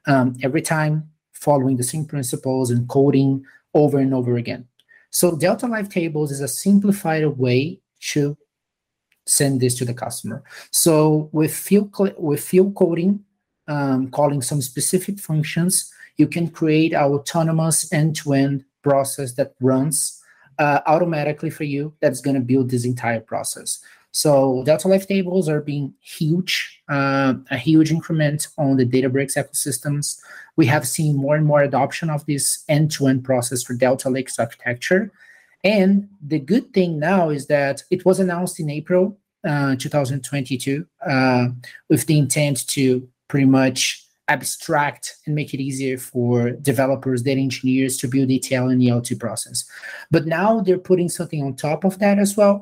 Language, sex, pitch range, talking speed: English, male, 135-165 Hz, 155 wpm